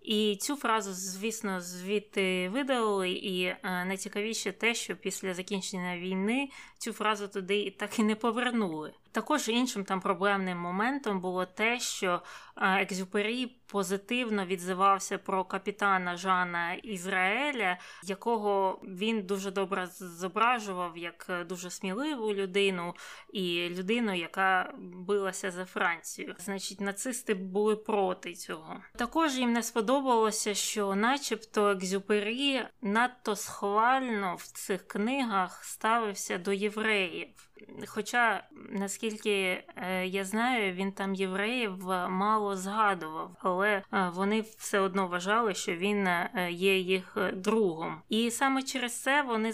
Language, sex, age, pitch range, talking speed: Ukrainian, female, 20-39, 190-225 Hz, 115 wpm